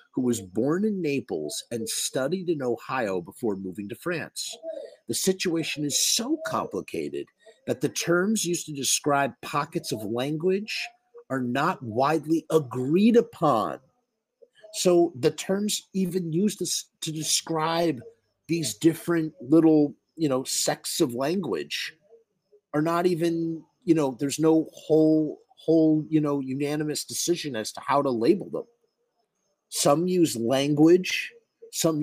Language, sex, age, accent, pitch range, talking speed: English, male, 50-69, American, 130-205 Hz, 135 wpm